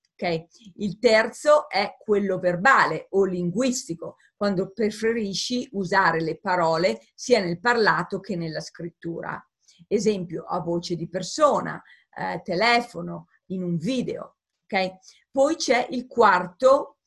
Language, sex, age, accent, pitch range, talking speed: Italian, female, 40-59, native, 180-235 Hz, 115 wpm